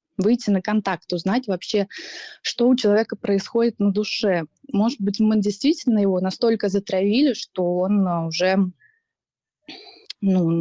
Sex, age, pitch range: female, 20-39, 190-235 Hz